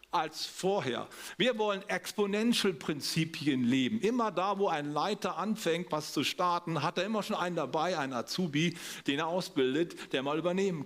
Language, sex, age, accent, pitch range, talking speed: German, male, 50-69, German, 160-215 Hz, 160 wpm